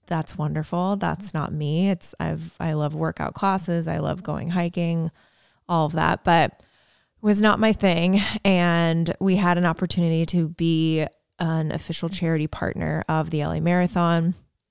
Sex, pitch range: female, 160-185 Hz